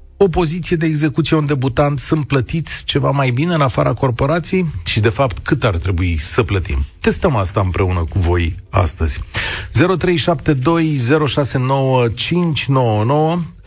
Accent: native